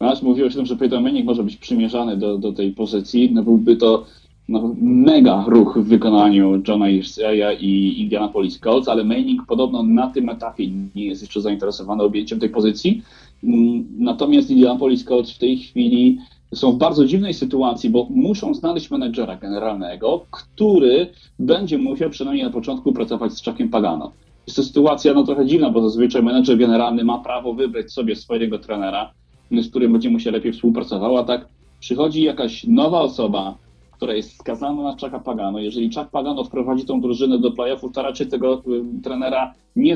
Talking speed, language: 170 wpm, Polish